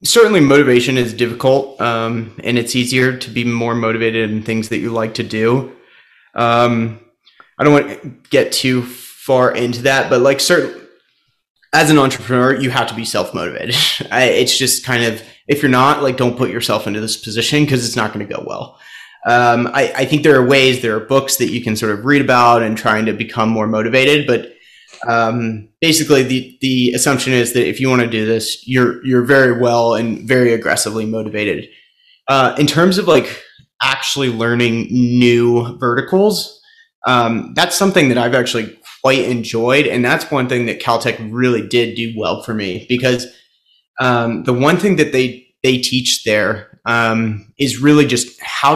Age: 30-49